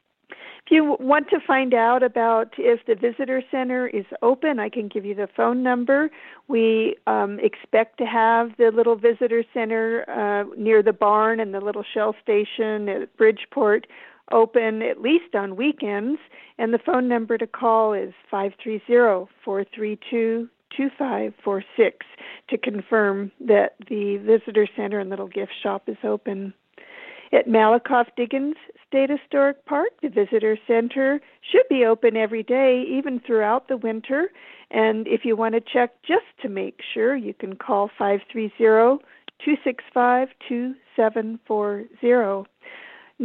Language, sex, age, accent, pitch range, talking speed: English, female, 50-69, American, 220-265 Hz, 135 wpm